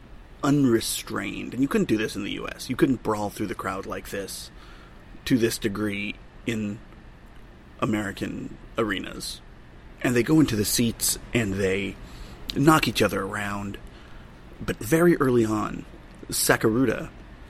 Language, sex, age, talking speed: English, male, 30-49, 135 wpm